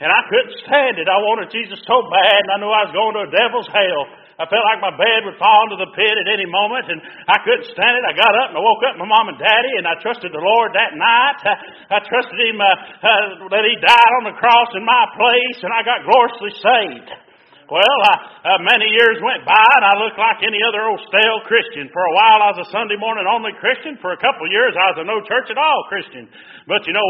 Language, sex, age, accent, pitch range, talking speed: English, male, 50-69, American, 195-240 Hz, 255 wpm